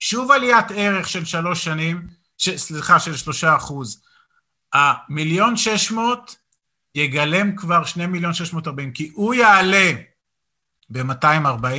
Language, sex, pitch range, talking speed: Hebrew, male, 145-190 Hz, 125 wpm